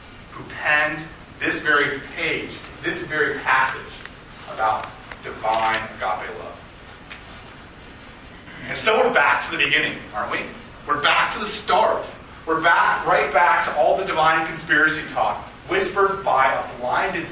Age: 30-49